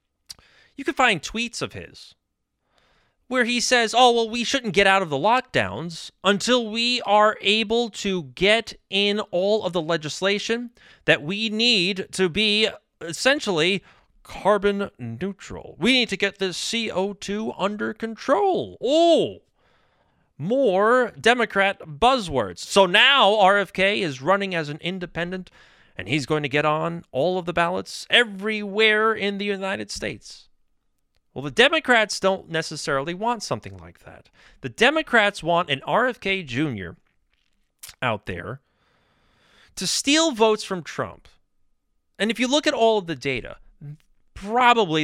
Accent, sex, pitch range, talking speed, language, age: American, male, 155-225 Hz, 140 wpm, English, 30-49